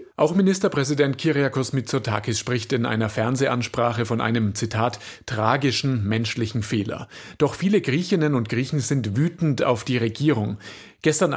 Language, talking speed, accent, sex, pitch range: German, 130 wpm, German, male, 115-160 Hz